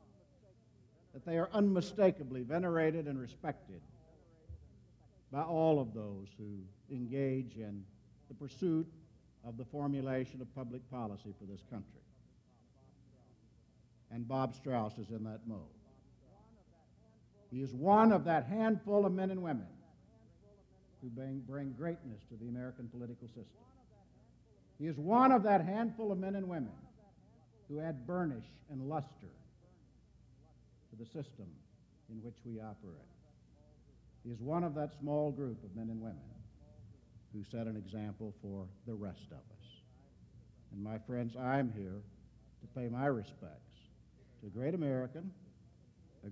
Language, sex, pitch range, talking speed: English, male, 110-155 Hz, 135 wpm